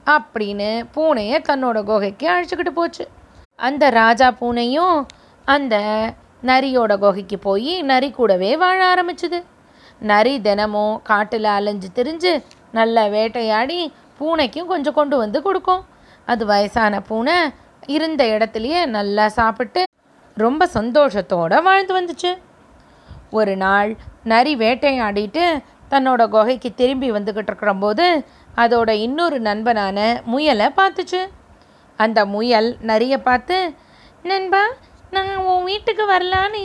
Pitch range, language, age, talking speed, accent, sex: 220-355 Hz, Tamil, 20-39, 105 wpm, native, female